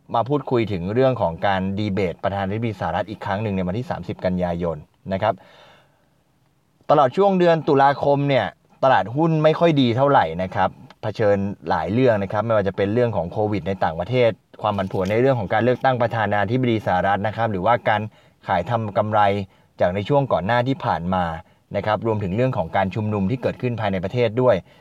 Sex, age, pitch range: male, 20-39, 95-125 Hz